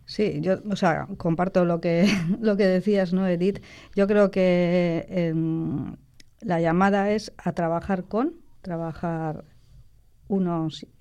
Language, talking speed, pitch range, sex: Spanish, 130 wpm, 160-190 Hz, female